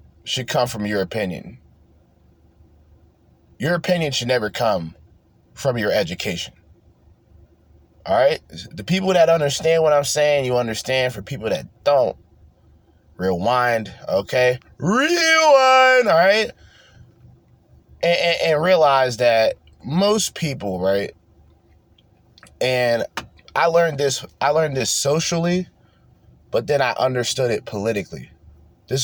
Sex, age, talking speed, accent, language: male, 20-39, 115 wpm, American, English